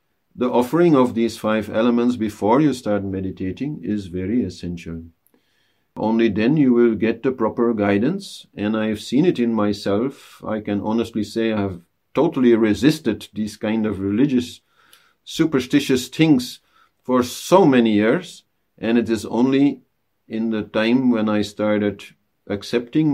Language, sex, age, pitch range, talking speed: English, male, 50-69, 105-130 Hz, 150 wpm